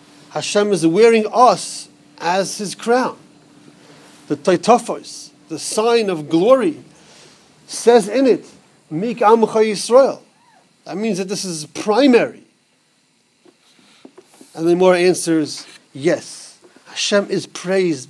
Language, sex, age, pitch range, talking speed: English, male, 40-59, 165-210 Hz, 110 wpm